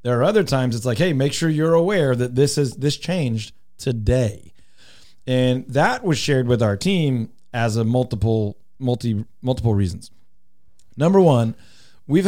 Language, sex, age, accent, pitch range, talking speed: English, male, 30-49, American, 105-145 Hz, 160 wpm